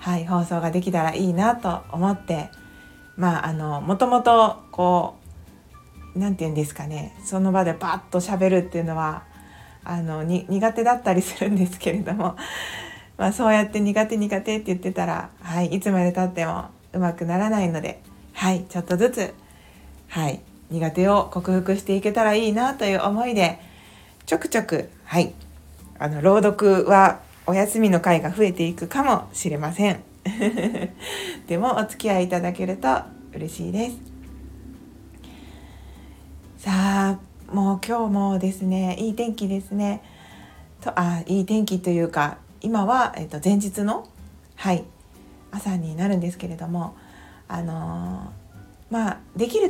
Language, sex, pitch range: Japanese, female, 165-210 Hz